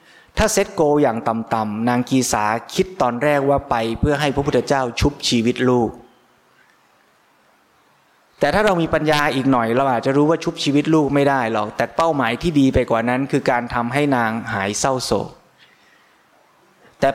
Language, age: Thai, 20-39